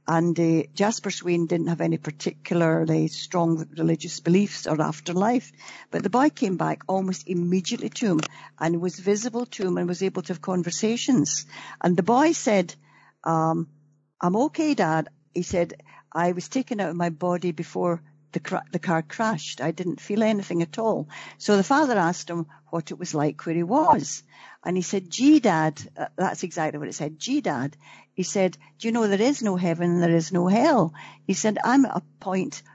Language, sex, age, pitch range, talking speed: English, female, 60-79, 165-205 Hz, 195 wpm